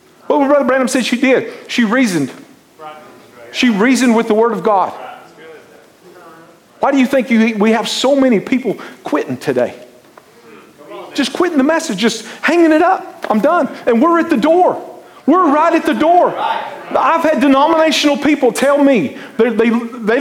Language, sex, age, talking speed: English, male, 40-59, 165 wpm